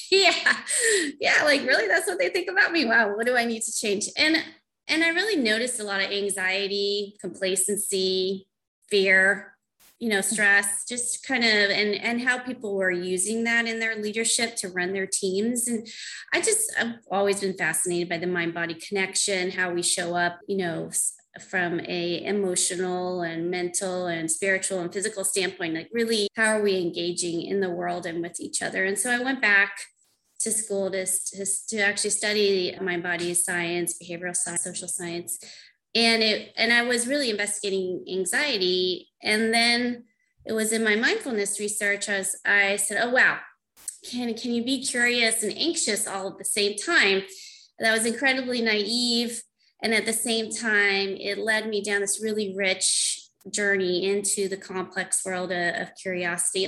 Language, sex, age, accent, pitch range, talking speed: English, female, 20-39, American, 185-230 Hz, 175 wpm